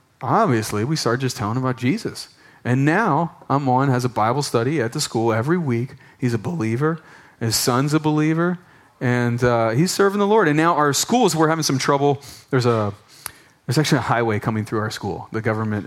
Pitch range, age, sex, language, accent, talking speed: 110-150 Hz, 30-49, male, English, American, 225 wpm